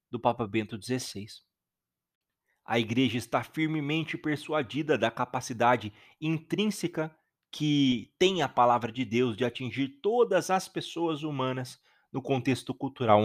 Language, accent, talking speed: Portuguese, Brazilian, 120 wpm